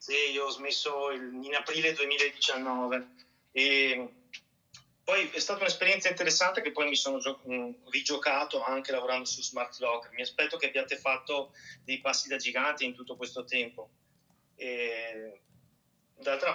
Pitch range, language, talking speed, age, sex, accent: 130-150 Hz, Italian, 135 wpm, 30-49, male, native